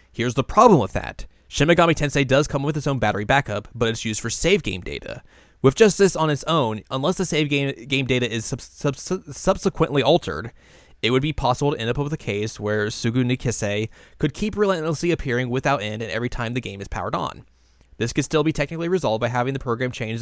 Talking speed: 225 wpm